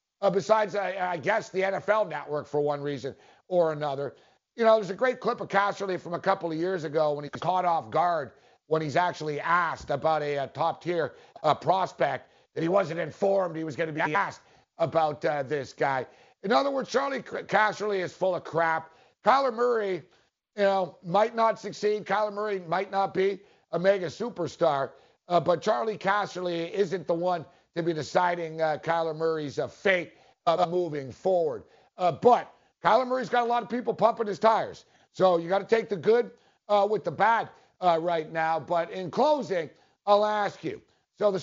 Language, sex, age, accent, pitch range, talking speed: English, male, 50-69, American, 165-210 Hz, 195 wpm